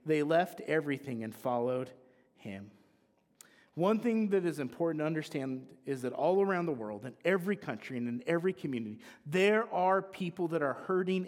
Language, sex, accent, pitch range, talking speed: English, male, American, 140-235 Hz, 170 wpm